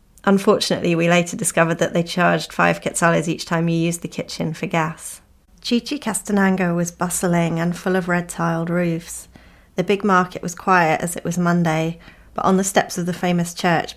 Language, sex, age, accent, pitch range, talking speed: English, female, 20-39, British, 165-180 Hz, 185 wpm